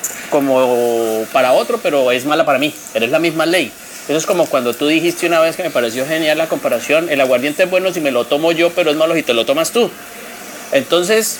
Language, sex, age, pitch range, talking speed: Spanish, male, 30-49, 150-195 Hz, 235 wpm